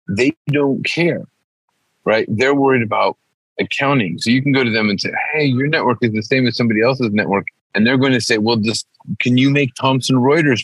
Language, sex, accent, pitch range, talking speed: English, male, American, 110-140 Hz, 215 wpm